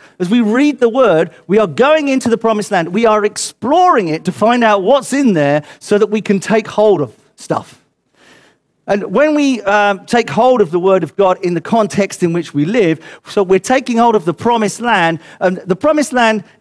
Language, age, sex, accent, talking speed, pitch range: English, 40-59, male, British, 215 wpm, 195-245 Hz